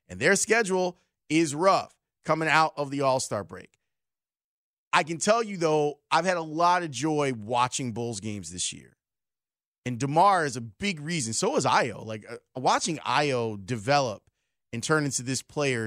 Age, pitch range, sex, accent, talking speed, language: 30-49, 130-200 Hz, male, American, 175 wpm, English